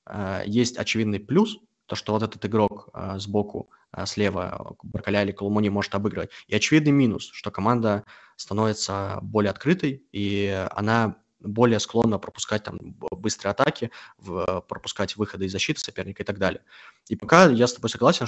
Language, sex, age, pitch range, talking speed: Russian, male, 20-39, 100-115 Hz, 150 wpm